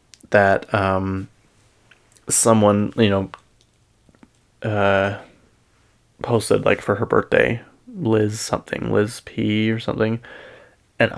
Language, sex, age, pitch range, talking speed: English, male, 20-39, 100-115 Hz, 95 wpm